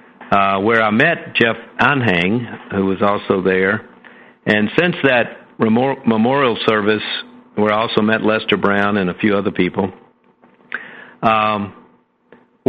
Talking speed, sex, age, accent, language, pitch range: 130 wpm, male, 50-69, American, English, 100-115 Hz